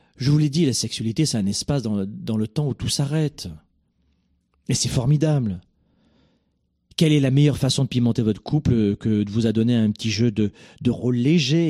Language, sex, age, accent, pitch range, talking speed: French, male, 40-59, French, 110-145 Hz, 205 wpm